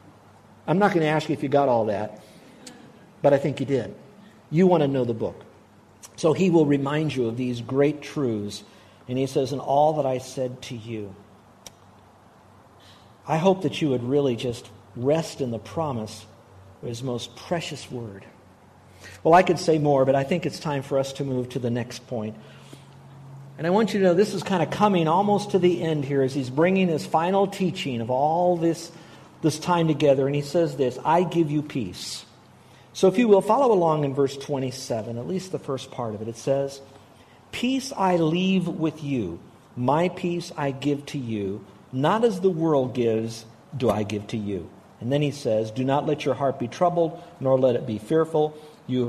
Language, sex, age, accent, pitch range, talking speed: English, male, 50-69, American, 120-160 Hz, 205 wpm